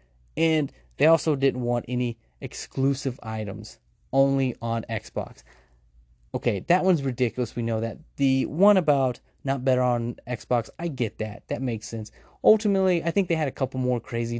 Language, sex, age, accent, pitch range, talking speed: English, male, 30-49, American, 115-155 Hz, 165 wpm